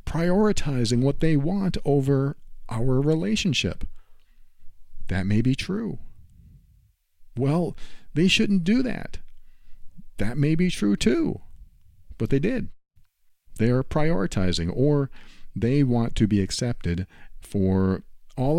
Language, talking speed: English, 115 wpm